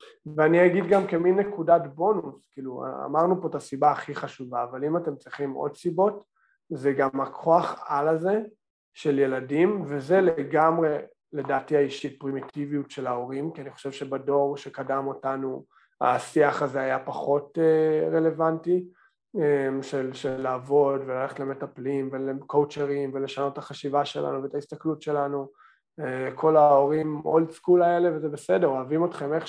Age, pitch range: 20-39, 140-165 Hz